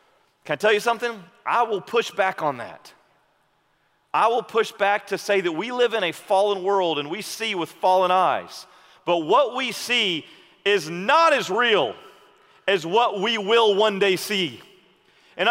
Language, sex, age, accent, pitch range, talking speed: English, male, 40-59, American, 195-285 Hz, 180 wpm